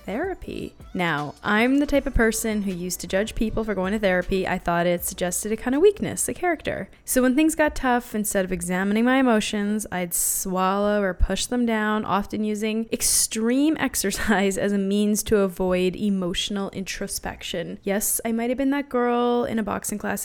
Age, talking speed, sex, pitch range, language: 10-29, 190 wpm, female, 190-245 Hz, English